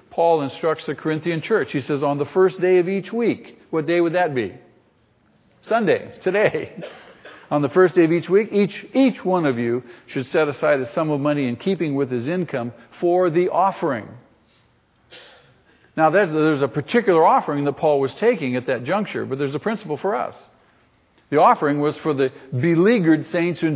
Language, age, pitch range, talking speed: English, 50-69, 140-180 Hz, 190 wpm